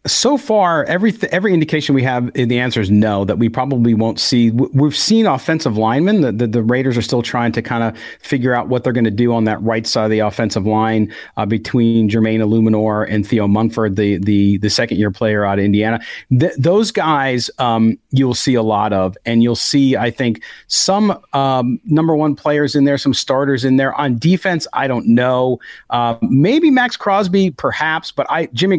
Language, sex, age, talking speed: English, male, 40-59, 205 wpm